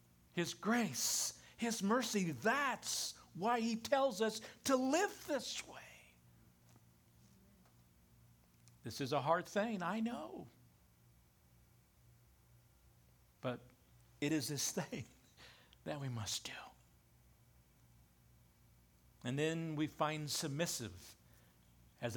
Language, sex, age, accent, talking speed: English, male, 60-79, American, 95 wpm